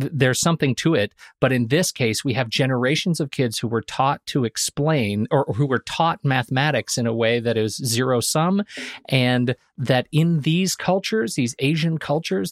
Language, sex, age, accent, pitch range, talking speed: English, male, 40-59, American, 120-155 Hz, 180 wpm